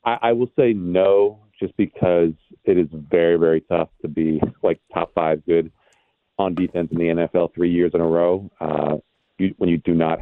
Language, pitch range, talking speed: English, 80-90 Hz, 190 wpm